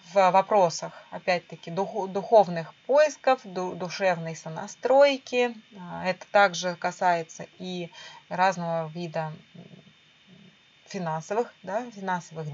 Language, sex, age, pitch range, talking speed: Russian, female, 20-39, 165-210 Hz, 75 wpm